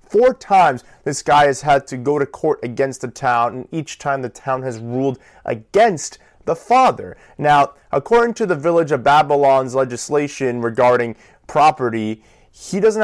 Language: English